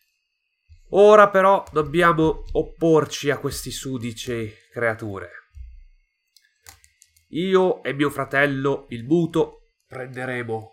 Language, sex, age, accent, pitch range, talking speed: Italian, male, 30-49, native, 105-150 Hz, 85 wpm